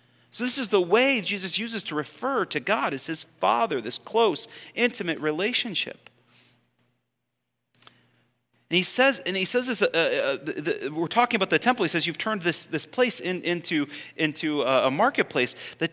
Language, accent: English, American